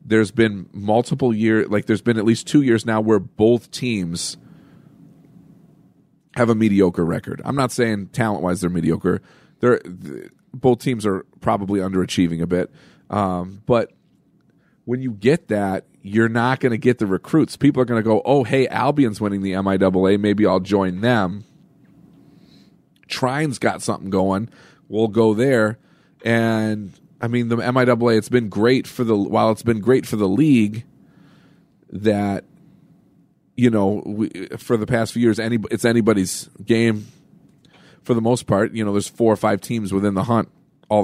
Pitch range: 95-120 Hz